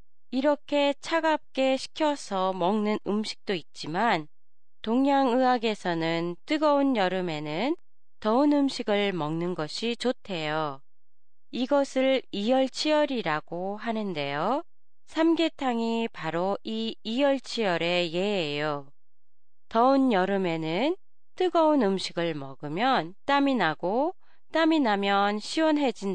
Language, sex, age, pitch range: Japanese, female, 20-39, 170-270 Hz